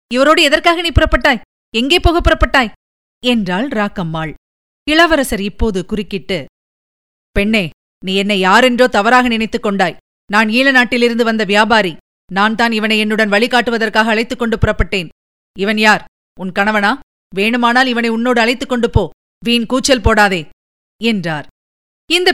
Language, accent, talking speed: Tamil, native, 120 wpm